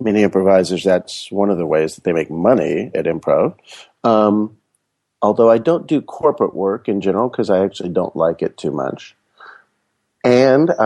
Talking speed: 170 wpm